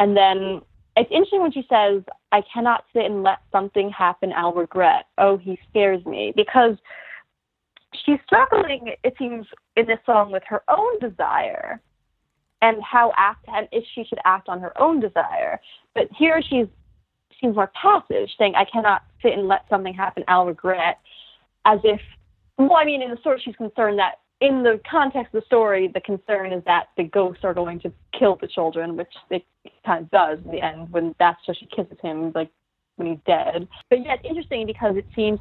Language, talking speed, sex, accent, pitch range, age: English, 195 wpm, female, American, 180-245 Hz, 20-39